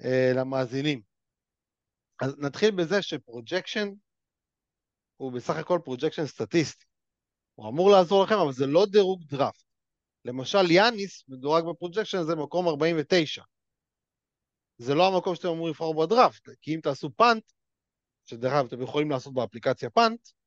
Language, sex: Hebrew, male